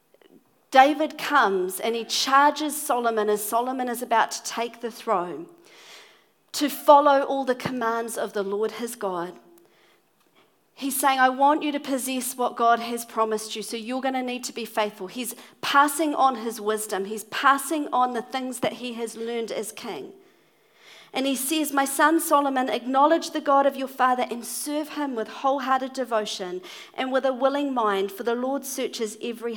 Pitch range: 220-275 Hz